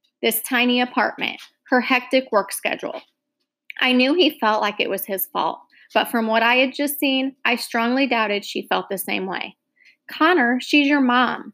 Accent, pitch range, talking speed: American, 215-285 Hz, 180 wpm